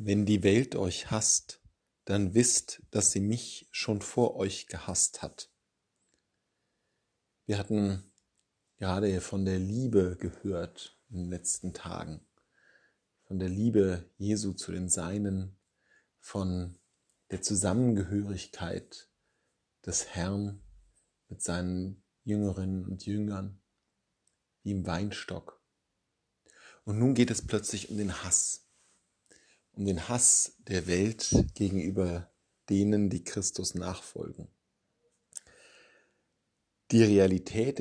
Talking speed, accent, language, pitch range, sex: 105 wpm, German, German, 90-105 Hz, male